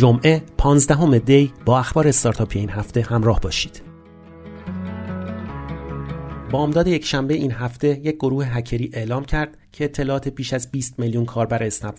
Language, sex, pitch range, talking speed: Persian, male, 115-145 Hz, 135 wpm